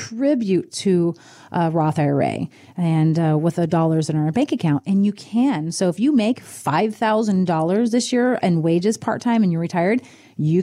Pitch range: 170-225 Hz